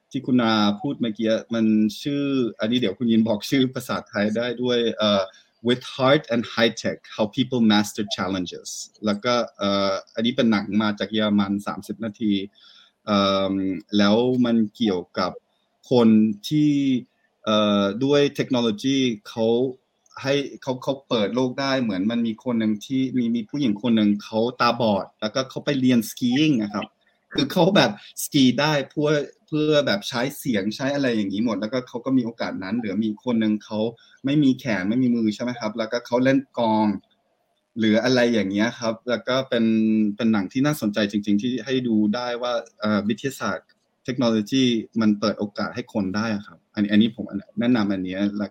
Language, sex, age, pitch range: Thai, male, 20-39, 105-125 Hz